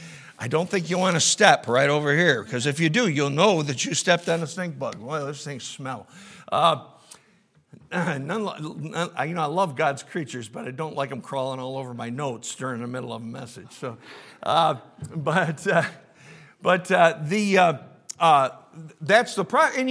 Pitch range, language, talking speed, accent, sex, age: 155-215 Hz, English, 195 wpm, American, male, 50-69